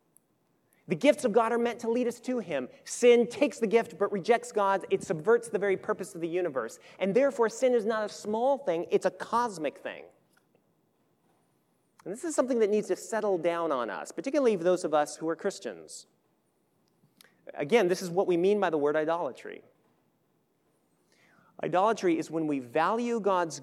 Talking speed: 185 wpm